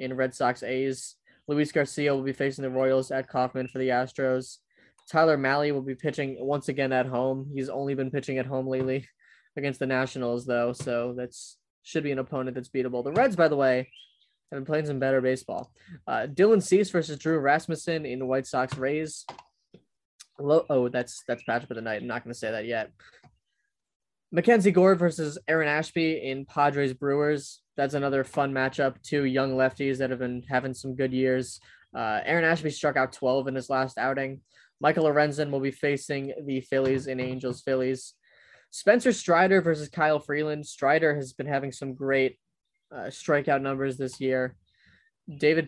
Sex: male